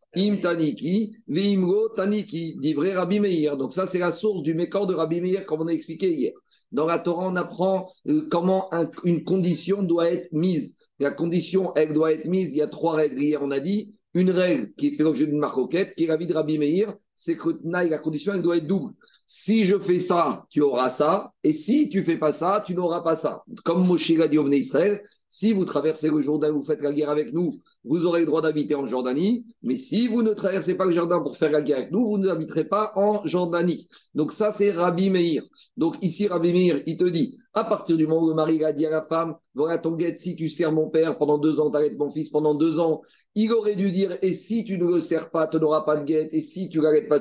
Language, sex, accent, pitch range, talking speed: French, male, French, 155-195 Hz, 235 wpm